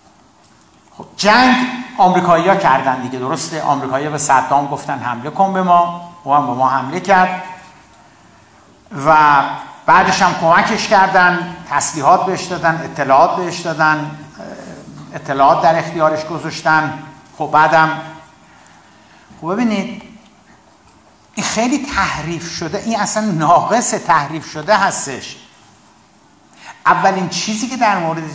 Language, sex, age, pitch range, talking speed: Persian, male, 60-79, 150-200 Hz, 110 wpm